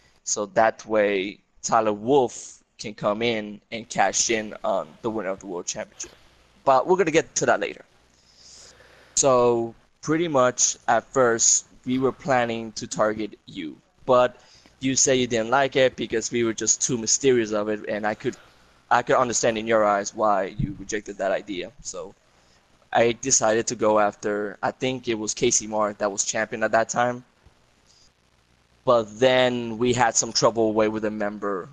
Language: English